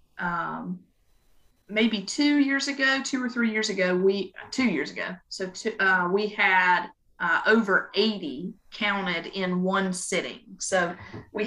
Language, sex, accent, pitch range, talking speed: English, female, American, 185-215 Hz, 145 wpm